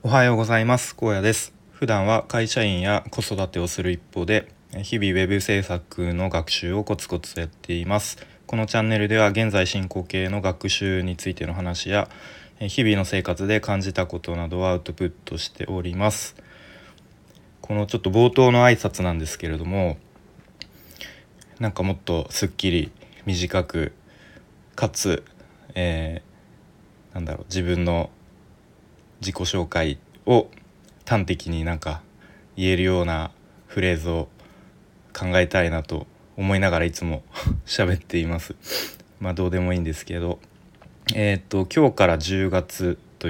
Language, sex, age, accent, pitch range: Japanese, male, 20-39, native, 85-105 Hz